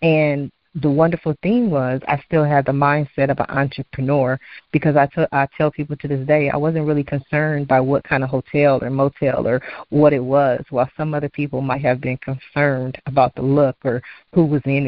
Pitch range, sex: 135-155 Hz, female